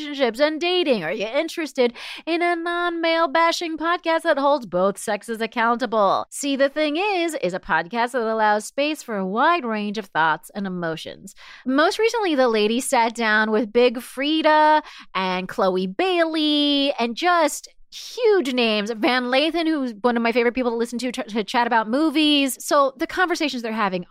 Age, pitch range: 30-49, 215-315 Hz